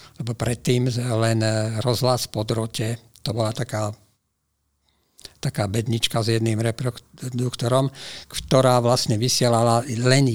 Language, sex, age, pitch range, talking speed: Slovak, male, 50-69, 110-130 Hz, 100 wpm